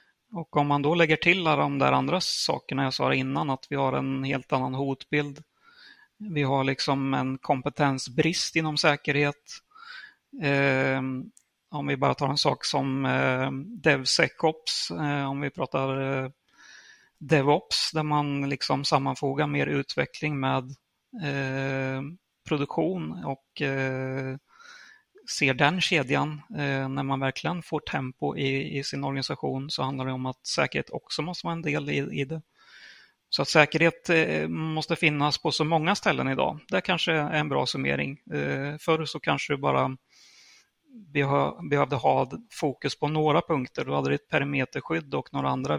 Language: Swedish